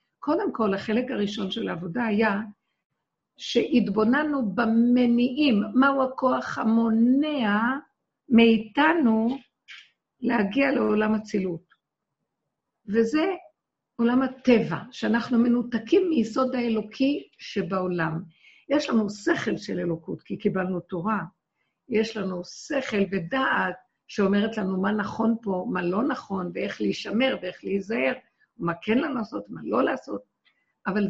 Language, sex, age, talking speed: Hebrew, female, 50-69, 105 wpm